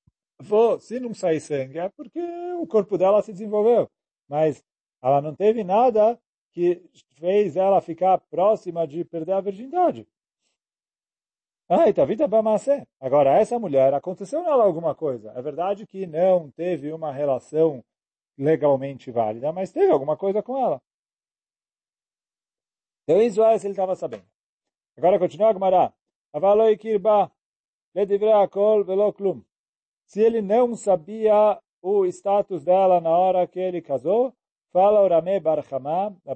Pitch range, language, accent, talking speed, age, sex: 155-210 Hz, Portuguese, Brazilian, 130 wpm, 40-59, male